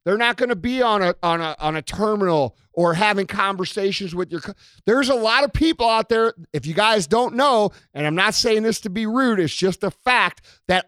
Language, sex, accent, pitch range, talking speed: English, male, American, 175-240 Hz, 235 wpm